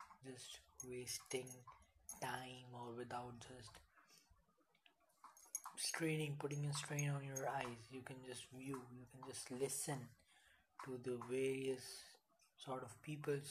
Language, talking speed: English, 120 wpm